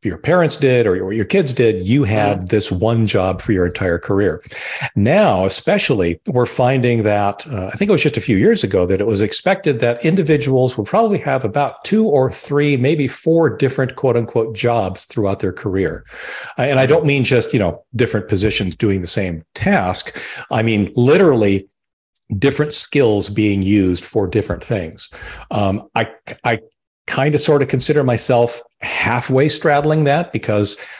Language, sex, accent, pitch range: English, male, American, 100-145 Hz